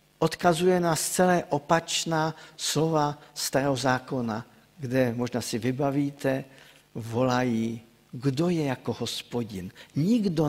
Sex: male